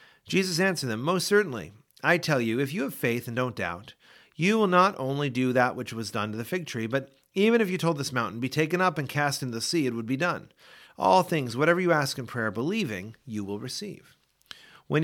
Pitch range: 115-180 Hz